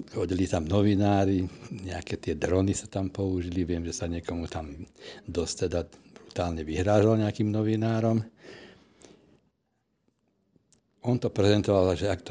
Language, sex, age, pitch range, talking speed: Slovak, male, 60-79, 85-100 Hz, 115 wpm